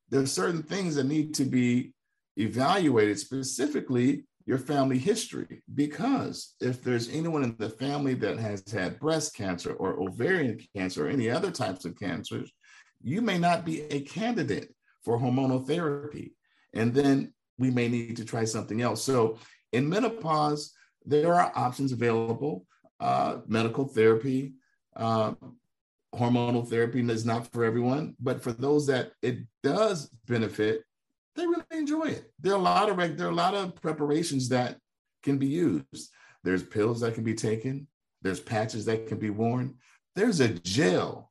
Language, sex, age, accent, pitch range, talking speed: English, male, 50-69, American, 115-150 Hz, 160 wpm